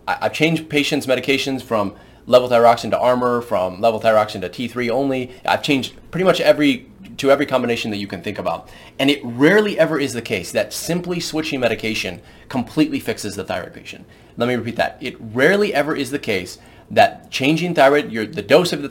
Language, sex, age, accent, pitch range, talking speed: English, male, 30-49, American, 115-150 Hz, 195 wpm